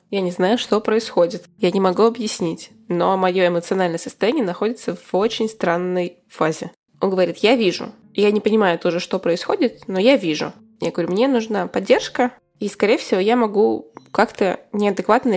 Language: Russian